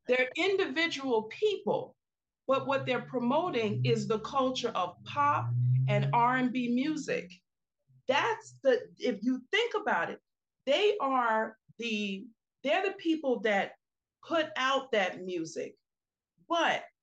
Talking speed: 120 wpm